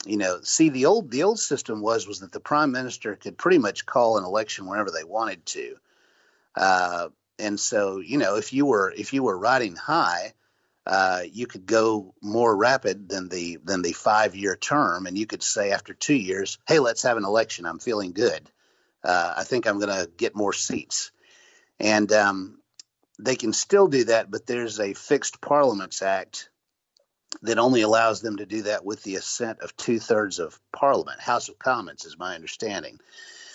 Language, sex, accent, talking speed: English, male, American, 190 wpm